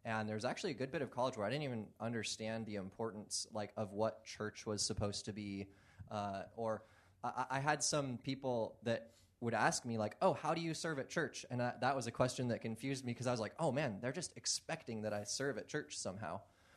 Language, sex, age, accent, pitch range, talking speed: English, male, 20-39, American, 100-115 Hz, 235 wpm